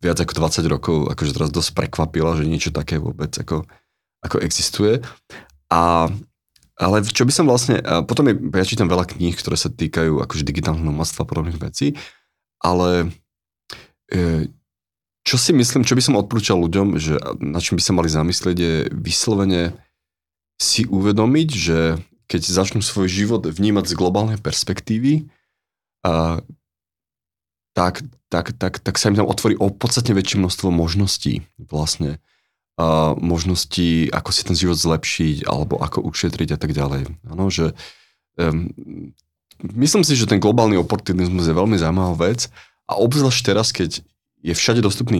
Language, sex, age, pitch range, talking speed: Czech, male, 30-49, 80-100 Hz, 145 wpm